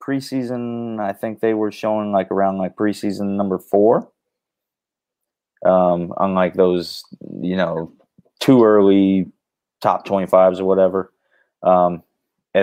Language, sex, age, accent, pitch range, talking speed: English, male, 30-49, American, 95-110 Hz, 125 wpm